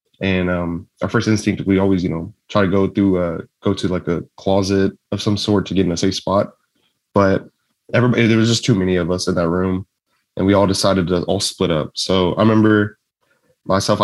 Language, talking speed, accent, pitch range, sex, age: English, 220 wpm, American, 90-105 Hz, male, 20-39